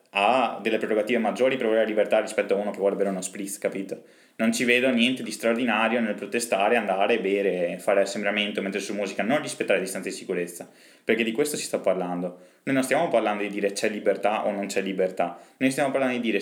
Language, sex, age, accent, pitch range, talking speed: Italian, male, 20-39, native, 100-130 Hz, 225 wpm